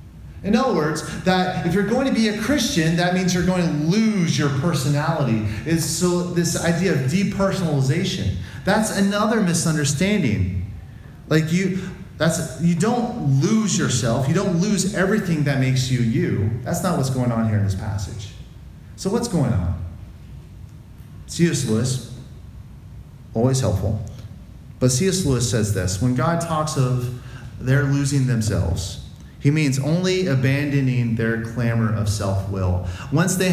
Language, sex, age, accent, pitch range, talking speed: English, male, 30-49, American, 115-180 Hz, 150 wpm